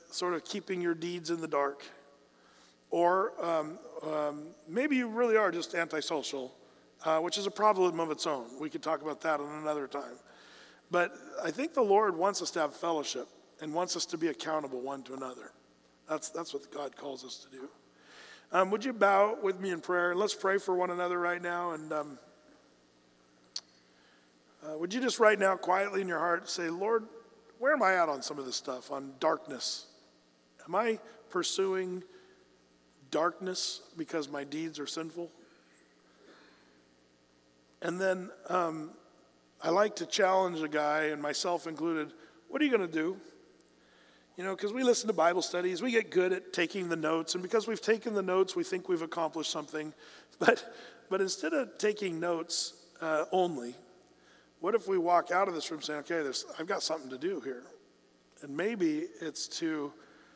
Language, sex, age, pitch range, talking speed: English, male, 40-59, 145-190 Hz, 180 wpm